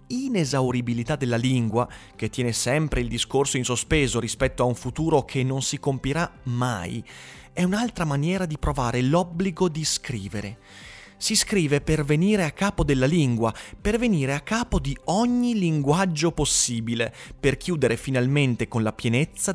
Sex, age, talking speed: male, 30-49, 150 wpm